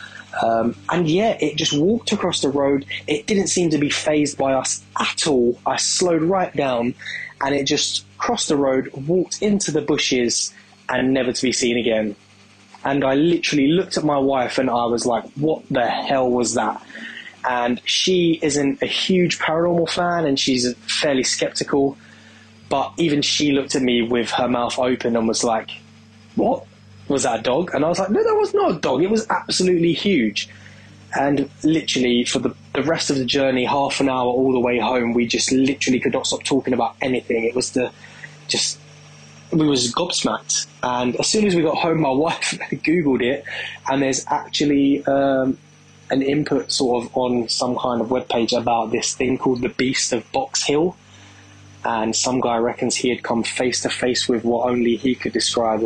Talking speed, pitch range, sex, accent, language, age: 190 wpm, 115-150 Hz, male, British, English, 10-29